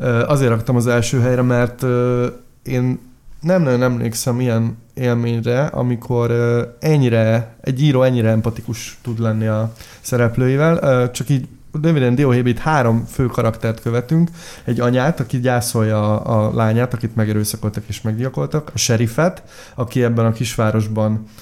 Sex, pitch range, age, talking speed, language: male, 115-140 Hz, 20-39, 130 wpm, Hungarian